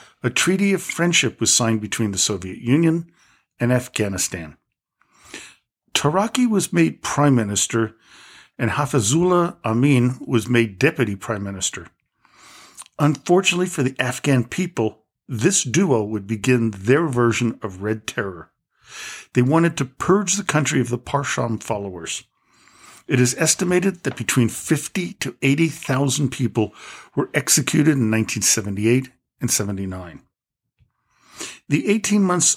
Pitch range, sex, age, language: 110-155 Hz, male, 50-69, English